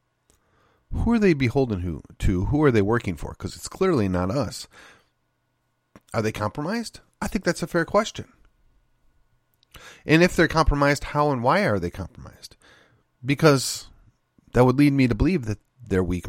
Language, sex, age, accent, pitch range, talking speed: English, male, 40-59, American, 90-125 Hz, 160 wpm